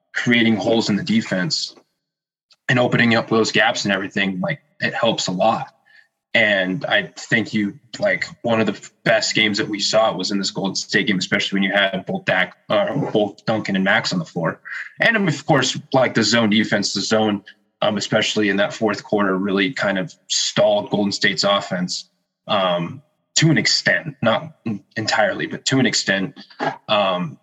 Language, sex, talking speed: English, male, 185 wpm